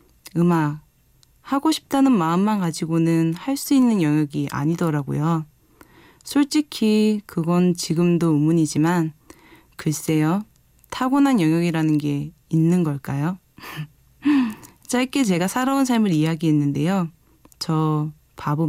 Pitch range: 155-195 Hz